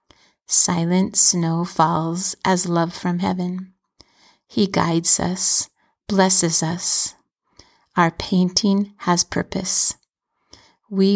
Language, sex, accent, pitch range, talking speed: English, female, American, 175-190 Hz, 90 wpm